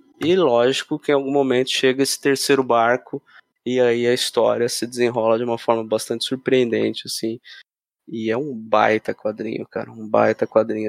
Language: Portuguese